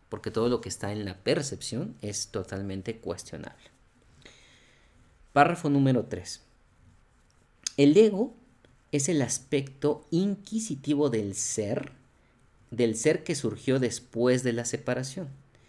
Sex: male